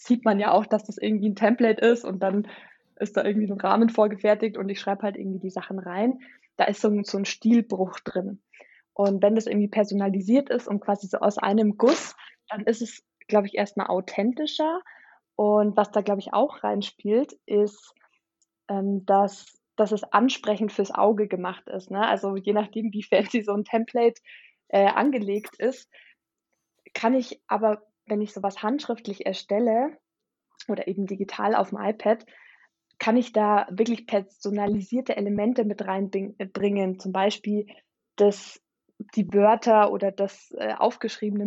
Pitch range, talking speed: 200-225 Hz, 160 wpm